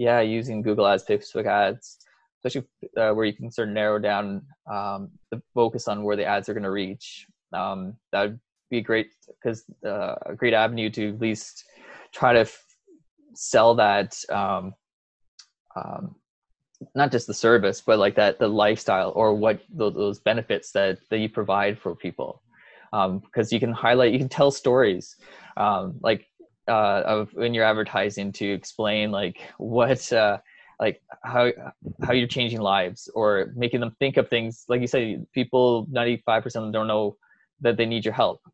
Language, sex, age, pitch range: English, male, 20-39, 100-120 Hz